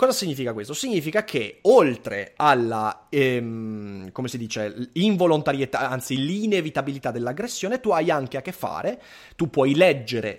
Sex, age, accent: male, 30-49, native